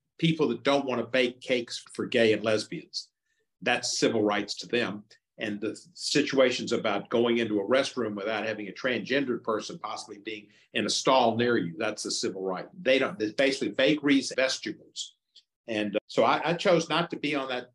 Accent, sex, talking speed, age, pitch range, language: American, male, 190 wpm, 50-69, 110-140 Hz, English